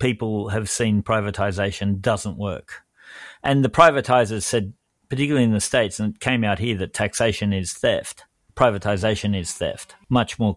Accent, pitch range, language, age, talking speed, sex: Australian, 100-120 Hz, English, 40-59, 160 wpm, male